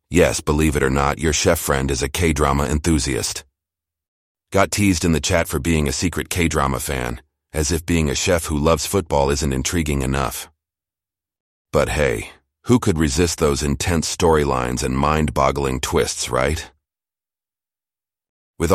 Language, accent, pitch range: English, American, 70-85 Hz